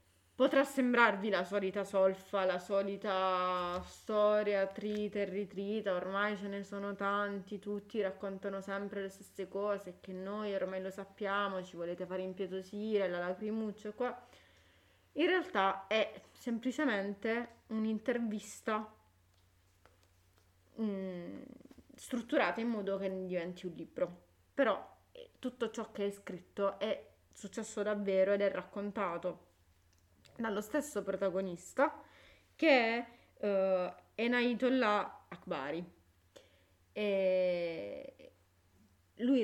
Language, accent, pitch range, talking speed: Italian, native, 180-215 Hz, 100 wpm